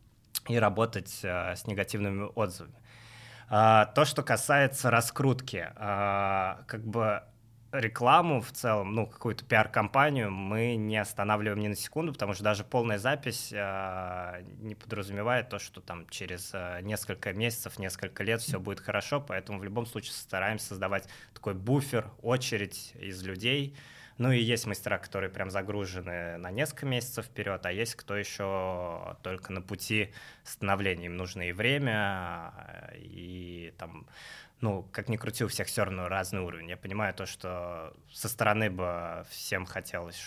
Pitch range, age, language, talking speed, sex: 95-115 Hz, 20-39, Russian, 145 wpm, male